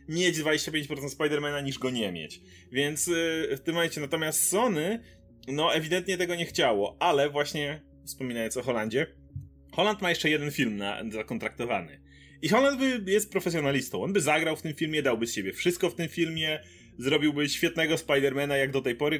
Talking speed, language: 170 wpm, Polish